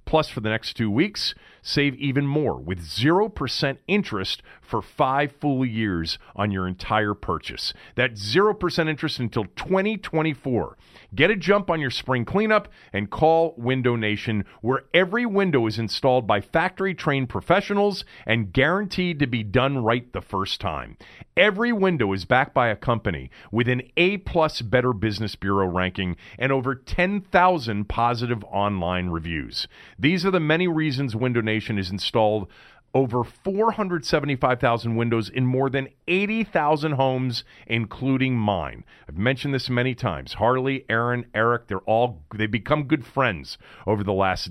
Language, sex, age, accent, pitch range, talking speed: English, male, 40-59, American, 105-145 Hz, 145 wpm